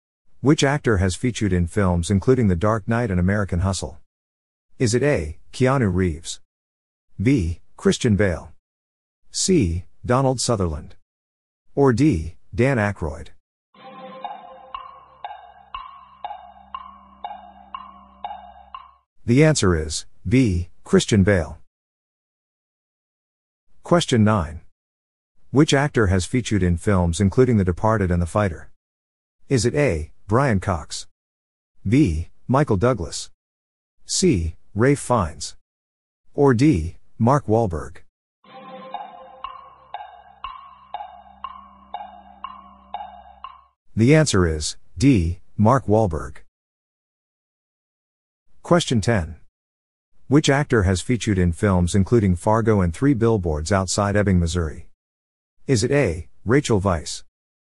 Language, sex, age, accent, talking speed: English, male, 50-69, American, 95 wpm